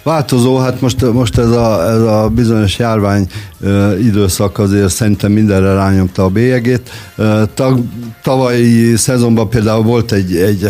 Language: Hungarian